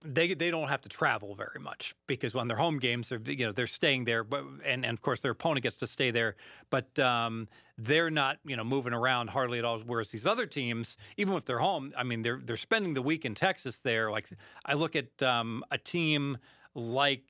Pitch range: 120-145 Hz